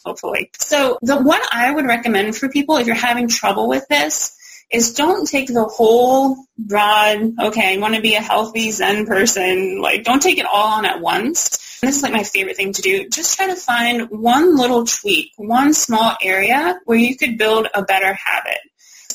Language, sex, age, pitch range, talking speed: English, female, 20-39, 215-275 Hz, 205 wpm